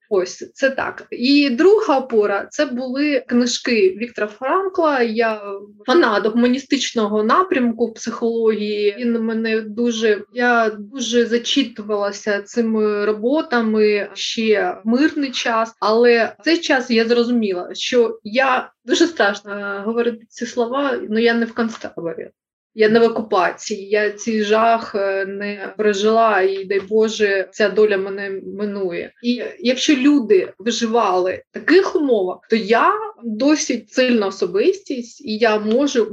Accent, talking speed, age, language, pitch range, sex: native, 125 wpm, 20-39, Ukrainian, 210-255 Hz, female